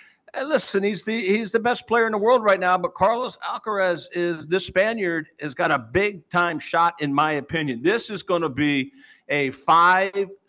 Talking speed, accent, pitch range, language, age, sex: 195 wpm, American, 135-180 Hz, English, 50-69, male